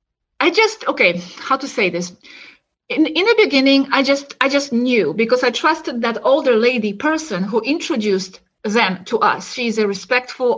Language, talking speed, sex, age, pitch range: English, 175 wpm, female, 30-49, 220-290 Hz